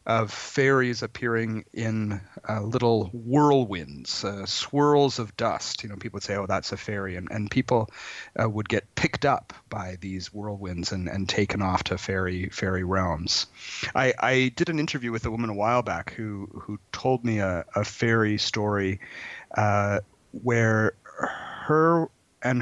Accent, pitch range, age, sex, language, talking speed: American, 100-125 Hz, 40-59, male, English, 165 wpm